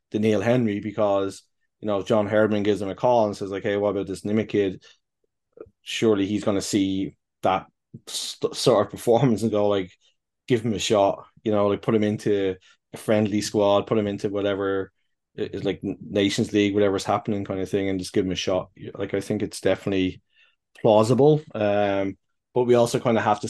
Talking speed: 205 wpm